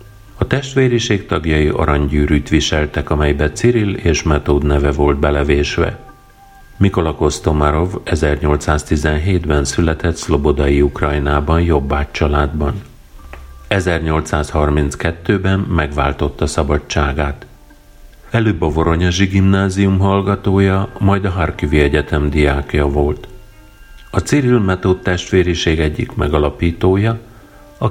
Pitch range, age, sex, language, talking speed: 75-100 Hz, 50-69, male, Hungarian, 90 wpm